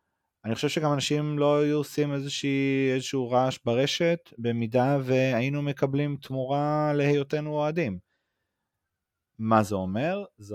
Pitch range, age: 90-120 Hz, 30-49